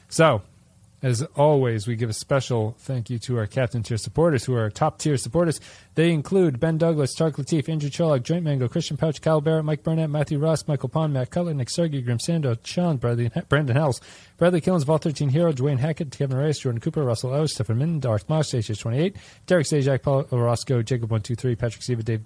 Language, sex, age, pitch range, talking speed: English, male, 30-49, 125-160 Hz, 210 wpm